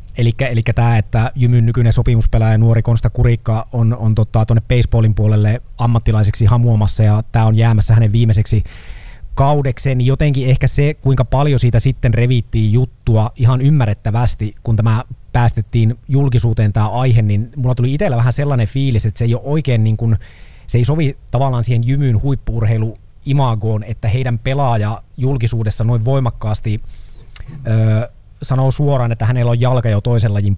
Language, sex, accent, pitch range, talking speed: Finnish, male, native, 110-125 Hz, 155 wpm